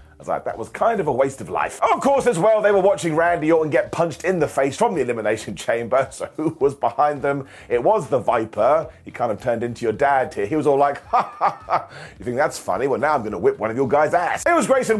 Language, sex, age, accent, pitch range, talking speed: English, male, 30-49, British, 140-200 Hz, 290 wpm